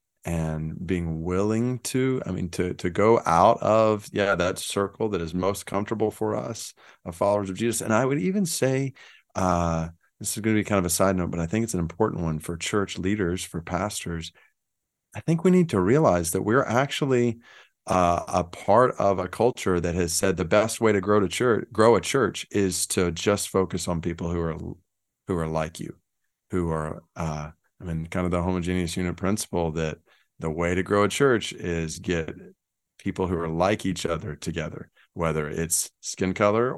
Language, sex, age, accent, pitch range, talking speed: English, male, 30-49, American, 85-105 Hz, 200 wpm